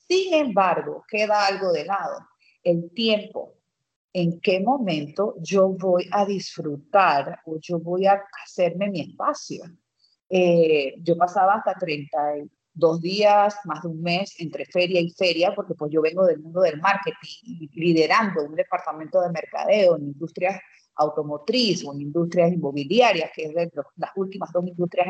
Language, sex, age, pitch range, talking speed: Spanish, female, 40-59, 170-220 Hz, 155 wpm